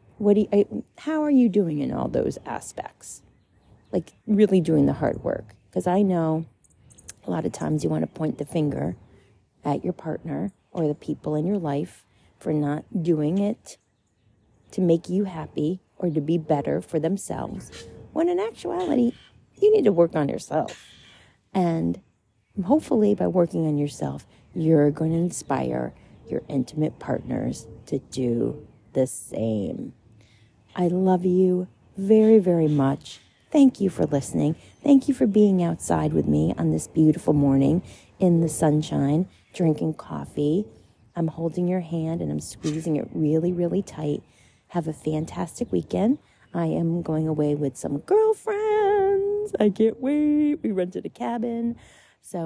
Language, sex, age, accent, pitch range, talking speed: English, female, 40-59, American, 140-195 Hz, 155 wpm